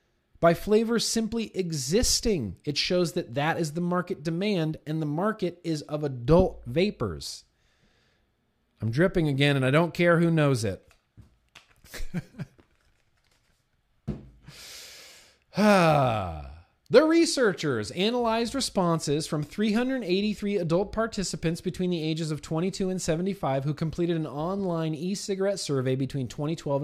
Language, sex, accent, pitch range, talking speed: English, male, American, 140-210 Hz, 120 wpm